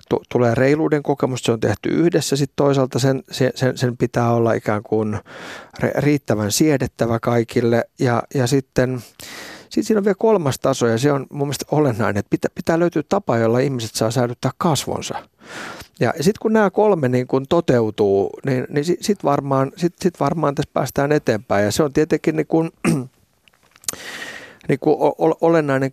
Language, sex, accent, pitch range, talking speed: Finnish, male, native, 115-145 Hz, 160 wpm